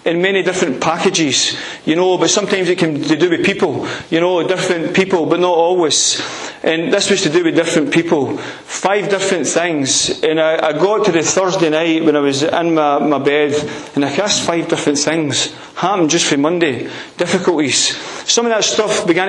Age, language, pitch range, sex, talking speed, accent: 30-49, English, 160-185 Hz, male, 195 wpm, British